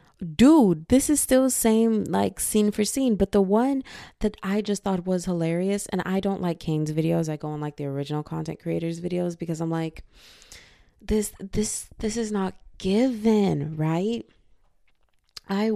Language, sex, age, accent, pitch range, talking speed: English, female, 20-39, American, 165-225 Hz, 170 wpm